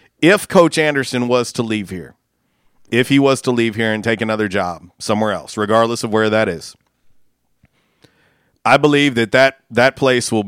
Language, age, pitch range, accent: English, 40-59, 110-130 Hz, American